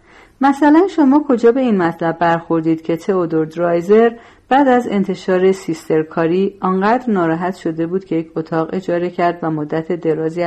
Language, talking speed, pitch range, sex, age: Persian, 155 wpm, 165-220 Hz, female, 40-59